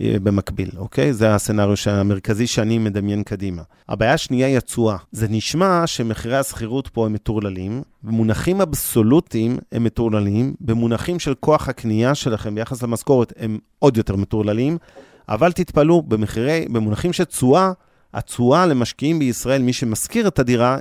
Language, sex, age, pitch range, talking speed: Hebrew, male, 30-49, 110-135 Hz, 135 wpm